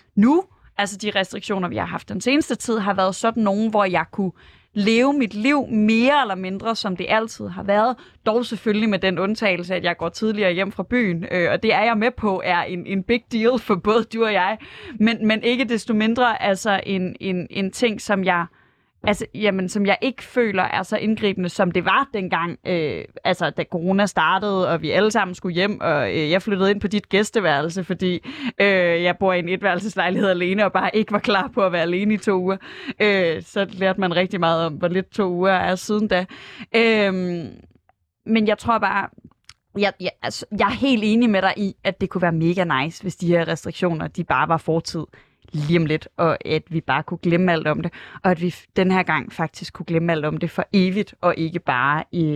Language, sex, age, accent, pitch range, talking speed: Danish, female, 20-39, native, 175-215 Hz, 205 wpm